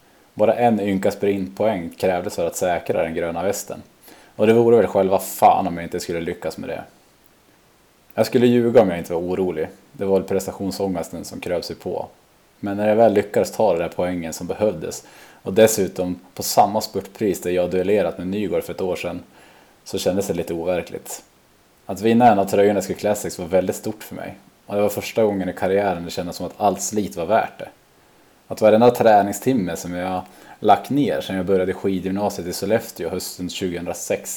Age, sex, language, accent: 20-39, male, Swedish, Norwegian